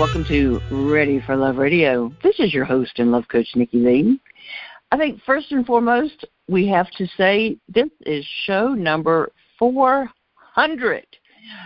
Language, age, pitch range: English, 60-79, 145-230 Hz